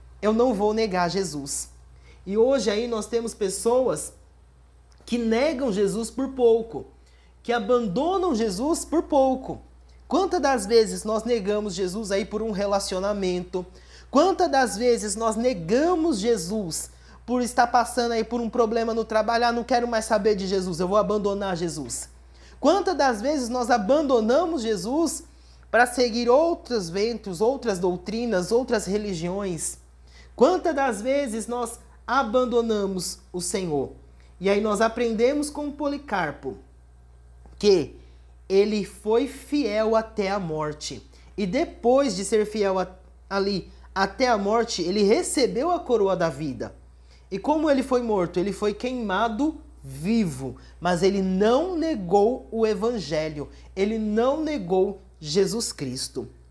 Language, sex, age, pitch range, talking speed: Portuguese, male, 30-49, 180-245 Hz, 135 wpm